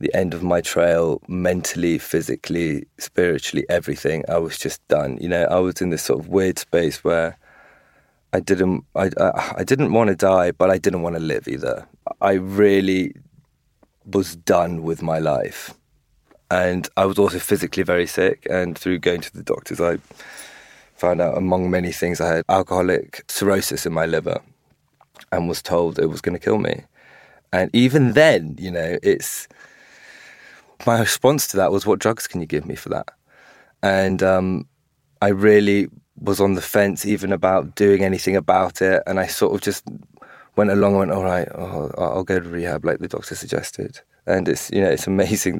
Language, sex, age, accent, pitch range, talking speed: English, male, 30-49, British, 85-100 Hz, 185 wpm